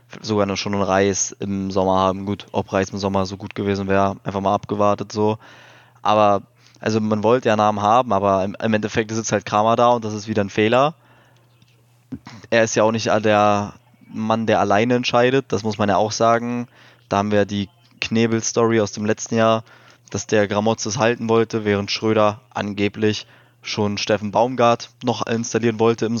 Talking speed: 190 wpm